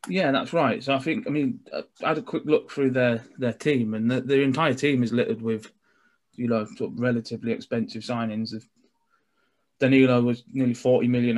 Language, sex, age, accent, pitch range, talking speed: English, male, 20-39, British, 115-130 Hz, 200 wpm